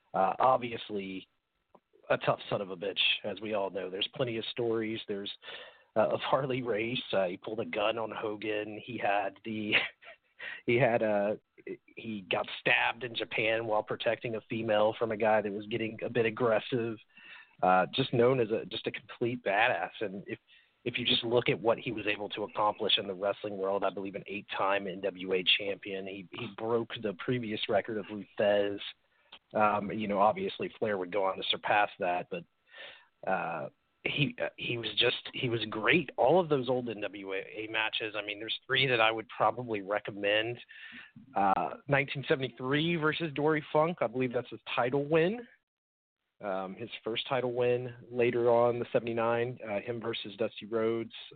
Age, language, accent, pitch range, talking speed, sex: 40-59, English, American, 105-125 Hz, 180 wpm, male